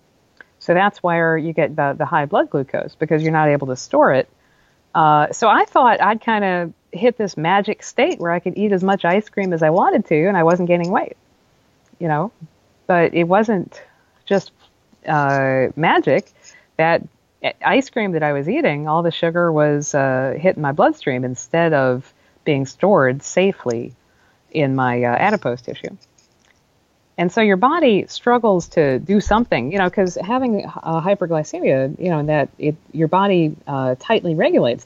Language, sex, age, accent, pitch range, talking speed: English, female, 50-69, American, 145-195 Hz, 175 wpm